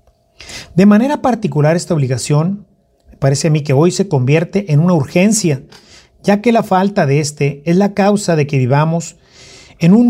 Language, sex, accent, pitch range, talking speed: Spanish, male, Mexican, 145-200 Hz, 180 wpm